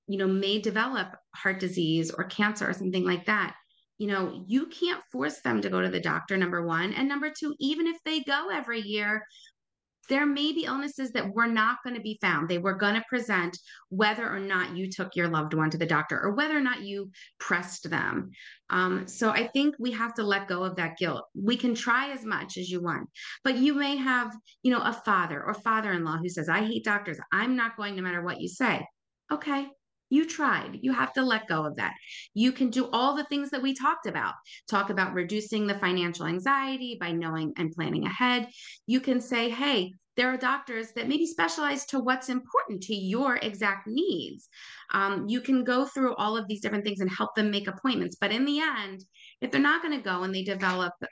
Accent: American